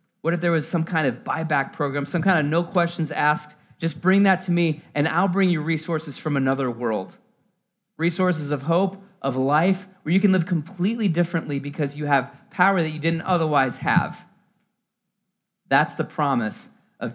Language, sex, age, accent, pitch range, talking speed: English, male, 30-49, American, 140-185 Hz, 180 wpm